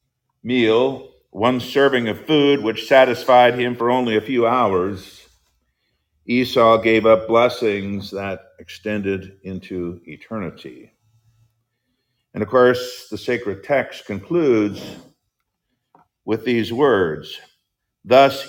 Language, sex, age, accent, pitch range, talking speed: English, male, 50-69, American, 100-125 Hz, 105 wpm